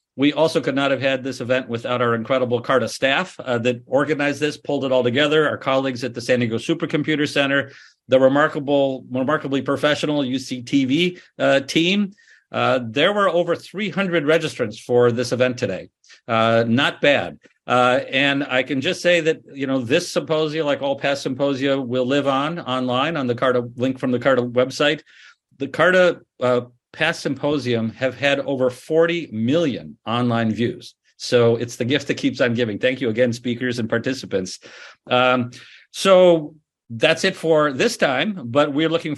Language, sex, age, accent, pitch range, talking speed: English, male, 50-69, American, 125-155 Hz, 170 wpm